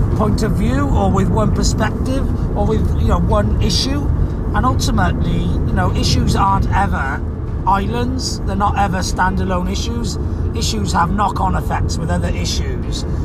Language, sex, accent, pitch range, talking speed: English, male, British, 80-95 Hz, 150 wpm